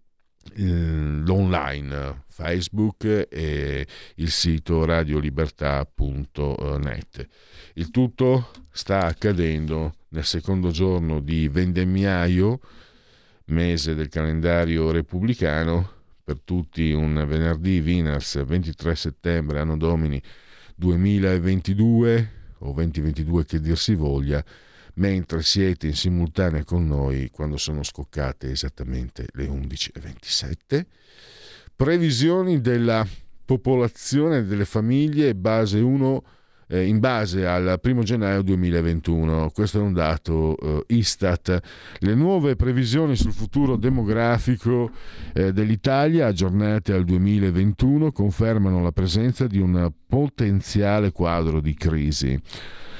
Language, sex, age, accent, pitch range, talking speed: Italian, male, 50-69, native, 80-110 Hz, 95 wpm